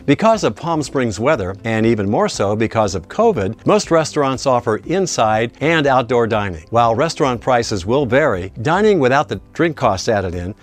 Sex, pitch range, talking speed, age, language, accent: male, 110-150 Hz, 175 wpm, 60-79, English, American